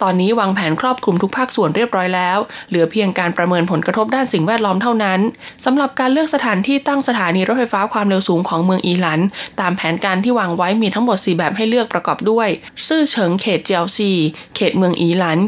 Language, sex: Thai, female